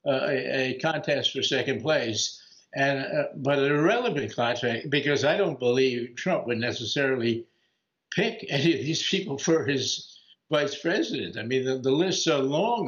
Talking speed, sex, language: 170 wpm, male, English